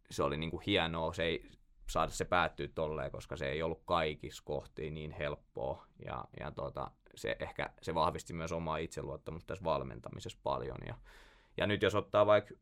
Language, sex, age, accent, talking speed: Finnish, male, 20-39, native, 180 wpm